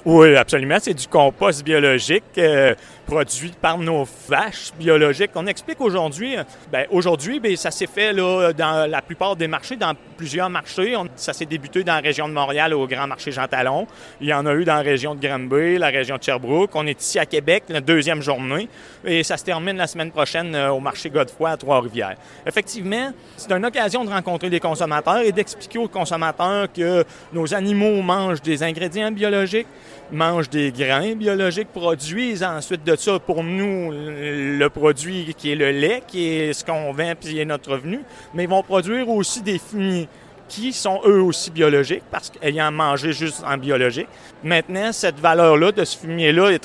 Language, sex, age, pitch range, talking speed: French, male, 30-49, 150-190 Hz, 190 wpm